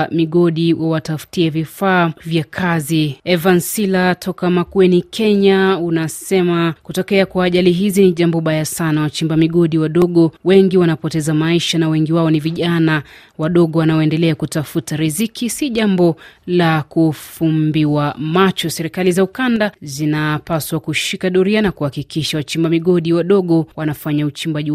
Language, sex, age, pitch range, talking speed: Swahili, female, 30-49, 155-185 Hz, 125 wpm